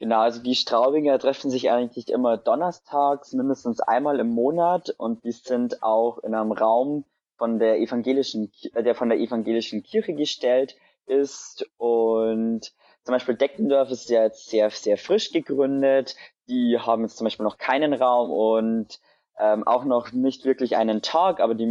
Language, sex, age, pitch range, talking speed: German, male, 20-39, 115-135 Hz, 165 wpm